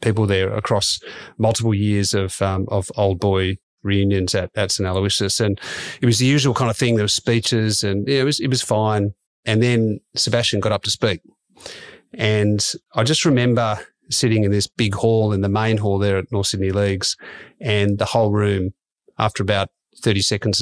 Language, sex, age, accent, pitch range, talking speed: English, male, 40-59, Australian, 100-120 Hz, 190 wpm